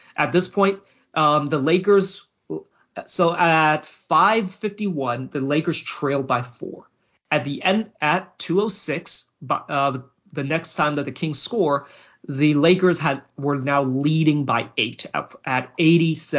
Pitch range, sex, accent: 140-175 Hz, male, American